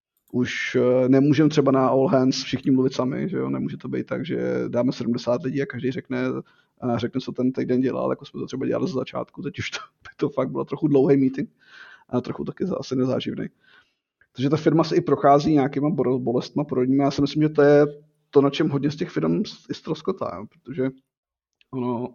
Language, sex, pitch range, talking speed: Czech, male, 130-145 Hz, 210 wpm